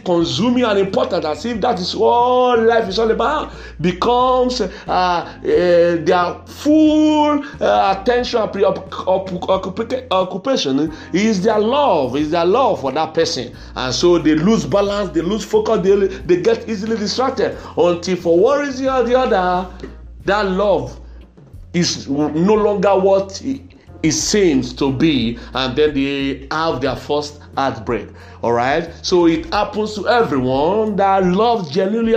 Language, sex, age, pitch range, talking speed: English, male, 50-69, 155-225 Hz, 140 wpm